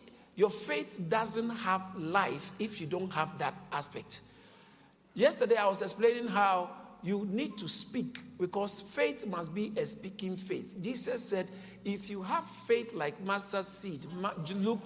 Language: English